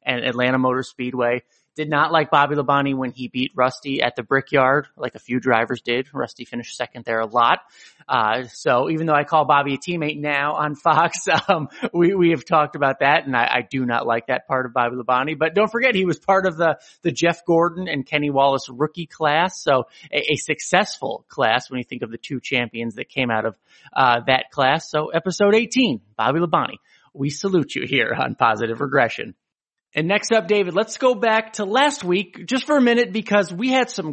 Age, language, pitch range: 30-49, English, 135-190 Hz